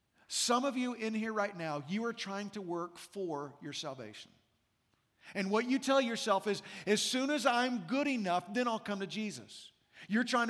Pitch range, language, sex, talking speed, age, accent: 180-225 Hz, English, male, 195 wpm, 50-69, American